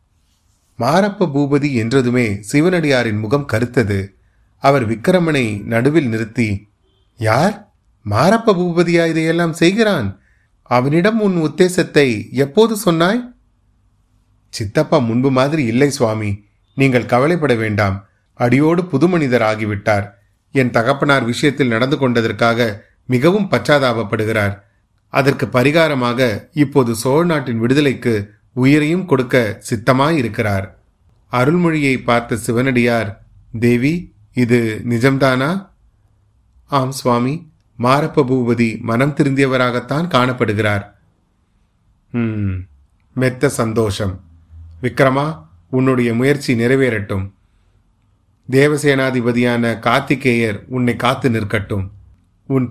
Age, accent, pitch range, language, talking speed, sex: 30-49, native, 105-140 Hz, Tamil, 80 wpm, male